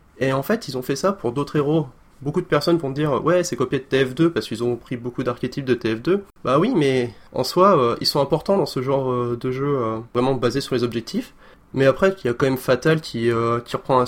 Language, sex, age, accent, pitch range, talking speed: French, male, 20-39, French, 120-155 Hz, 265 wpm